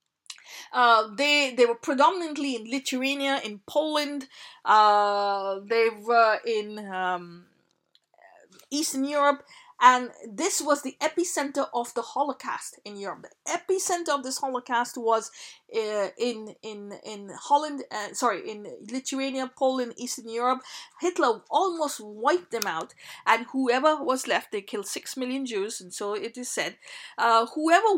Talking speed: 140 wpm